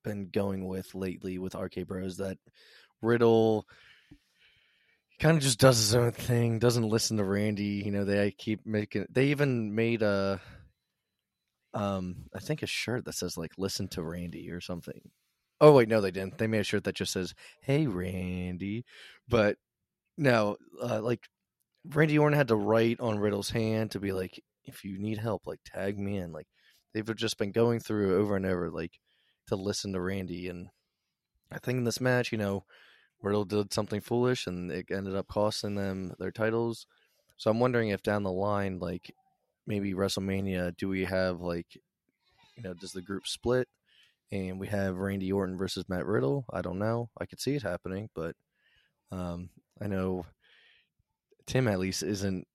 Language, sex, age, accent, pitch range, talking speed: English, male, 20-39, American, 95-115 Hz, 180 wpm